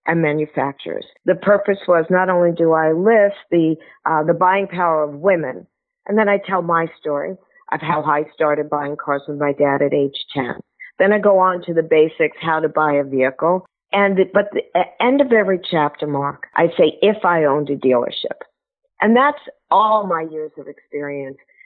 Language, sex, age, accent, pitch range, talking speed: English, female, 50-69, American, 160-200 Hz, 195 wpm